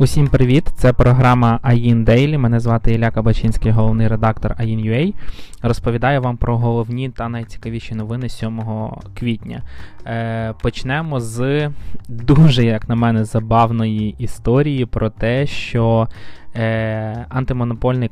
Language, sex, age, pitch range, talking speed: Ukrainian, male, 20-39, 110-130 Hz, 115 wpm